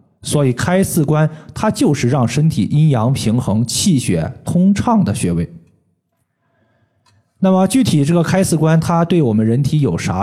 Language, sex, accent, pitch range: Chinese, male, native, 120-170 Hz